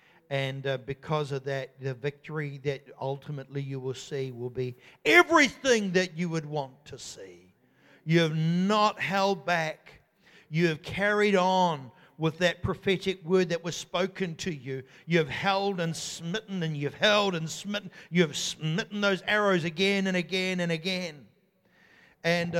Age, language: 50-69, English